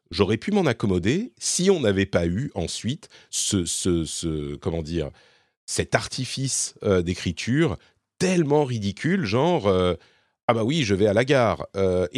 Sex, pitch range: male, 95-145 Hz